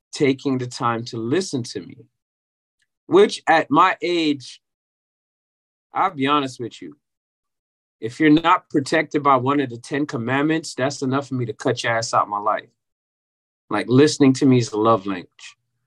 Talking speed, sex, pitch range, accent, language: 170 wpm, male, 120-145 Hz, American, English